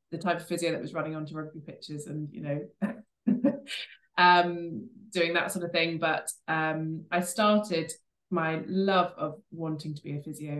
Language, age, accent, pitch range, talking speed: English, 20-39, British, 150-175 Hz, 175 wpm